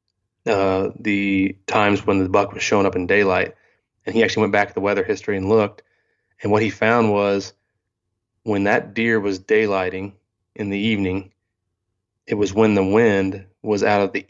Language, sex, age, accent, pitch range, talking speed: English, male, 20-39, American, 95-105 Hz, 185 wpm